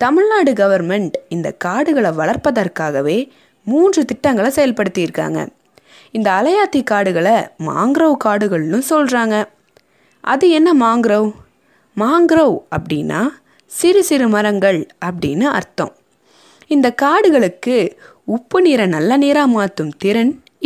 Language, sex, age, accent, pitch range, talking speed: Tamil, female, 20-39, native, 190-285 Hz, 95 wpm